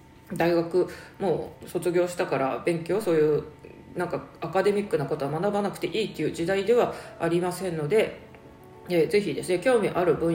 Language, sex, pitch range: Japanese, female, 150-180 Hz